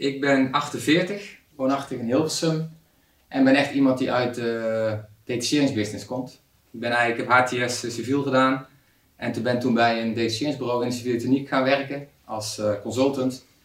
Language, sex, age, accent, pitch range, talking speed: Dutch, male, 20-39, Dutch, 105-125 Hz, 165 wpm